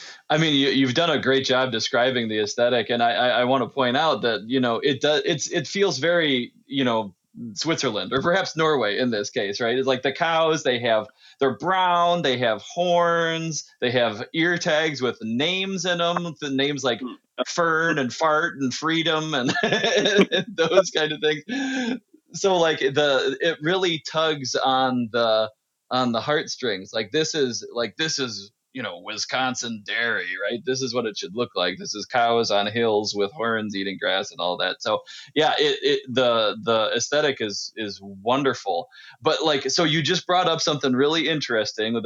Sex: male